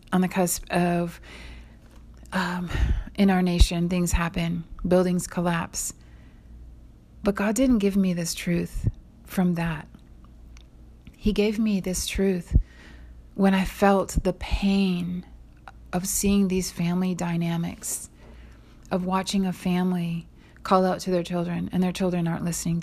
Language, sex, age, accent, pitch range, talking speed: English, female, 30-49, American, 170-185 Hz, 130 wpm